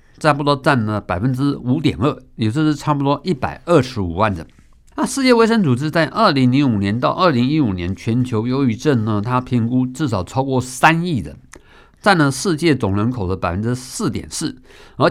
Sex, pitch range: male, 115-155 Hz